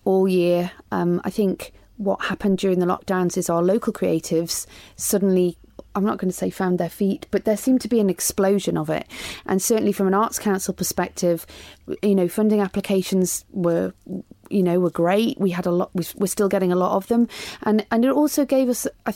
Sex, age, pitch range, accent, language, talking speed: female, 30-49, 185-225 Hz, British, English, 195 wpm